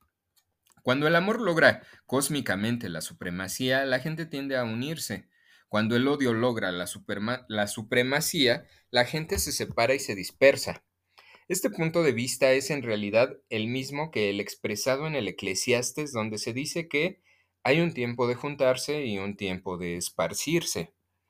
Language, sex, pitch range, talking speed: Spanish, male, 105-140 Hz, 155 wpm